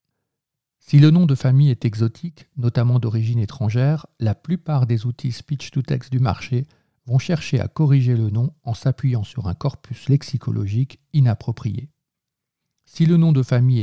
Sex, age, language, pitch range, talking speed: male, 50-69, French, 115-140 Hz, 150 wpm